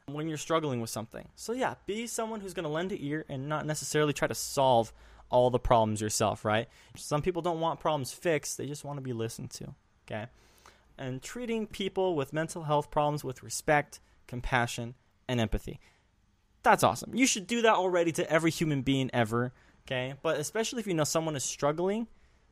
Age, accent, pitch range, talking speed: 10-29, American, 125-170 Hz, 195 wpm